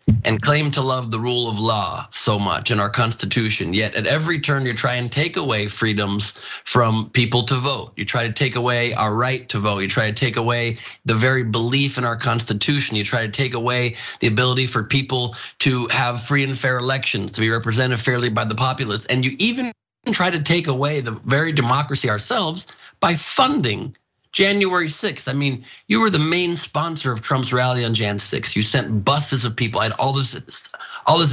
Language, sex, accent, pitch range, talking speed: English, male, American, 120-160 Hz, 205 wpm